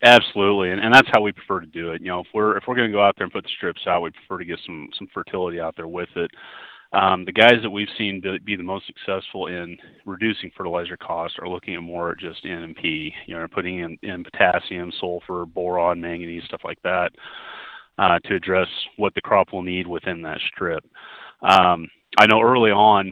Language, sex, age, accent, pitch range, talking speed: English, male, 30-49, American, 90-100 Hz, 230 wpm